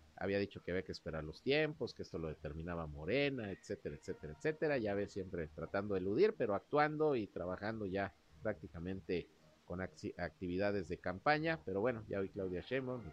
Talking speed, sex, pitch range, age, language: 180 wpm, male, 80-115 Hz, 50-69, Spanish